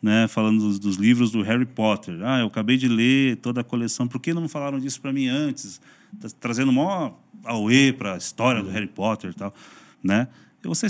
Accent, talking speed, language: Brazilian, 225 wpm, Portuguese